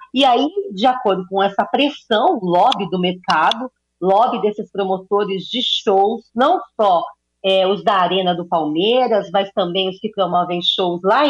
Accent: Brazilian